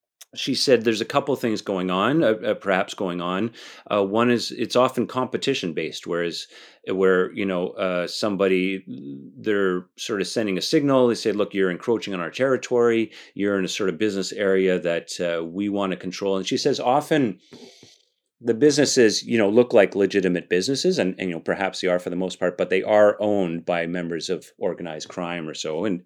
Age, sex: 30-49, male